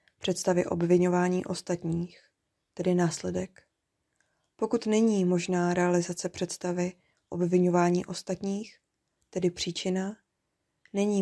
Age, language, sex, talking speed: 20-39, Czech, female, 80 wpm